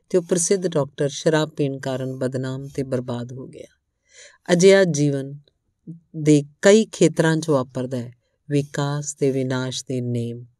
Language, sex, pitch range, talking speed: Punjabi, female, 140-170 Hz, 140 wpm